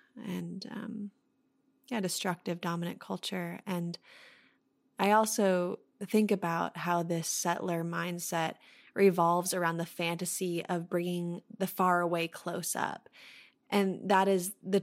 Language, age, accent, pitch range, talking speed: English, 20-39, American, 180-215 Hz, 120 wpm